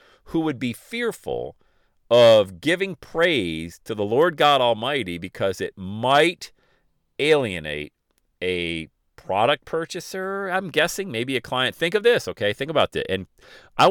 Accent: American